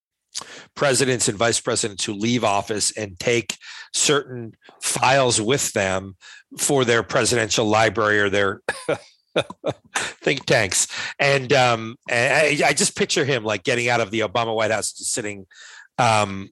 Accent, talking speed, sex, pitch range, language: American, 140 wpm, male, 105-130 Hz, English